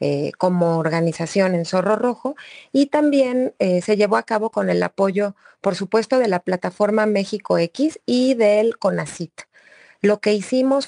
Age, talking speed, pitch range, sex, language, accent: 30-49, 160 wpm, 180-225 Hz, female, Spanish, Mexican